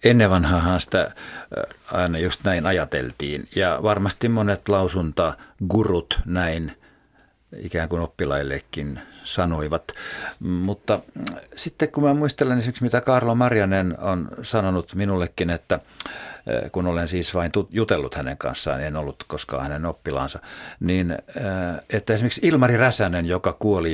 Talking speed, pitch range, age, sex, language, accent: 120 wpm, 85-115 Hz, 50-69, male, Finnish, native